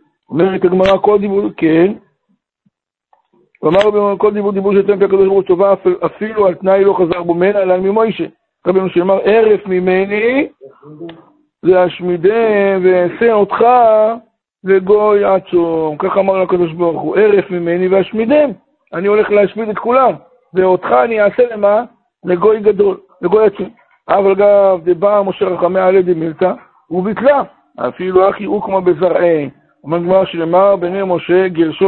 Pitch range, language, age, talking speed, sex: 175-205 Hz, Hebrew, 60-79, 140 wpm, male